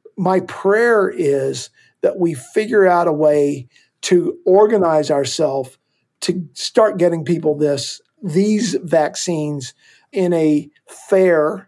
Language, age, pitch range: English, 50-69, 155-195 Hz